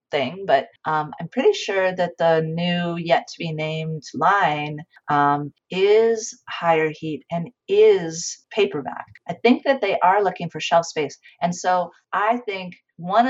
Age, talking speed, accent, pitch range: 40-59, 160 wpm, American, 160-225 Hz